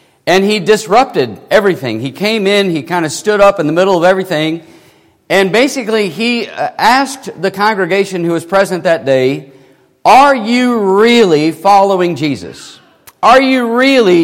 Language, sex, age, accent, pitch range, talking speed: English, male, 40-59, American, 165-205 Hz, 150 wpm